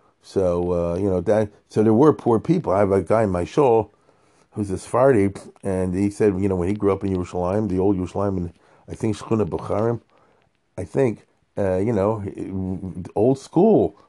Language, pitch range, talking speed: English, 95-120 Hz, 190 wpm